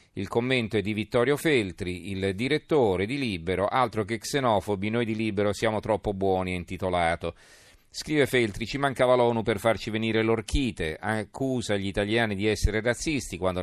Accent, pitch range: native, 95-115 Hz